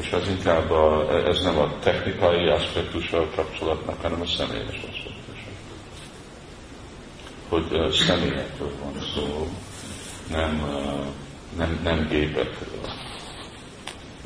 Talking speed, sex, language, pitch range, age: 105 wpm, male, Hungarian, 75-90 Hz, 40-59